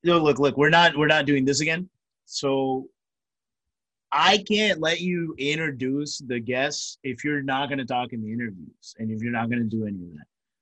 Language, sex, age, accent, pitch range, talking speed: English, male, 30-49, American, 115-150 Hz, 205 wpm